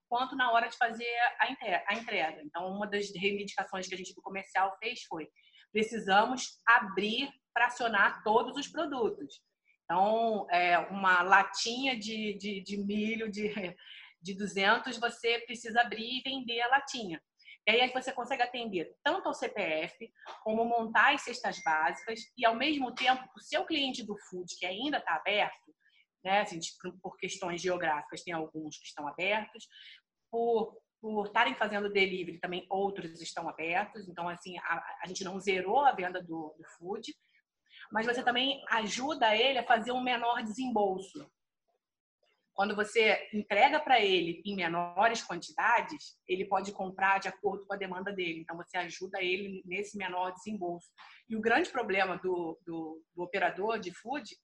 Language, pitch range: Portuguese, 180-235 Hz